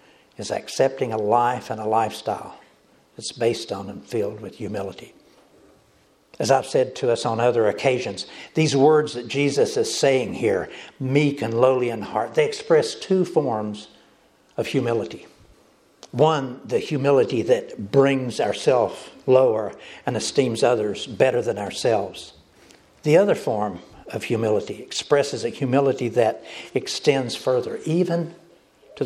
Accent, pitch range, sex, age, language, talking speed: American, 115-165 Hz, male, 60-79, English, 135 wpm